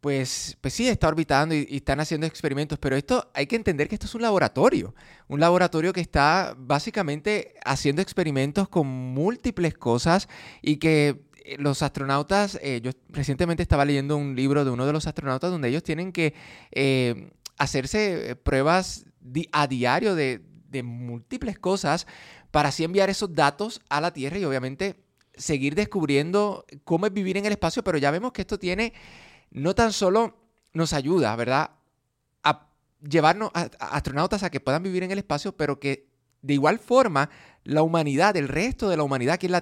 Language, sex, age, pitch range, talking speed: Spanish, male, 20-39, 140-185 Hz, 175 wpm